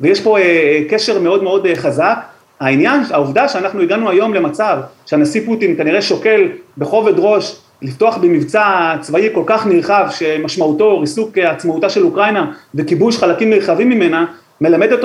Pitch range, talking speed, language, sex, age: 165-210 Hz, 135 wpm, Hebrew, male, 30-49